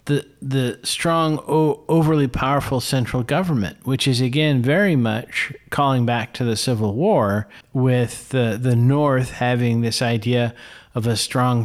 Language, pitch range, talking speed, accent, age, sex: English, 115-135 Hz, 150 wpm, American, 40-59, male